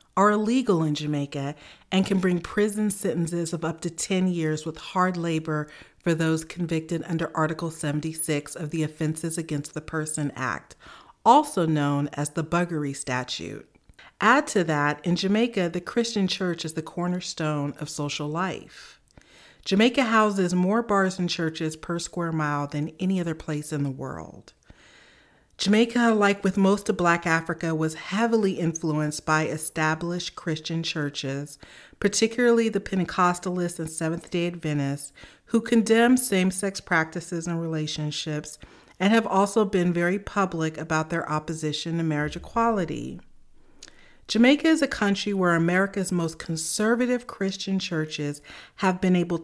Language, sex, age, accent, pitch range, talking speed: English, female, 40-59, American, 155-195 Hz, 140 wpm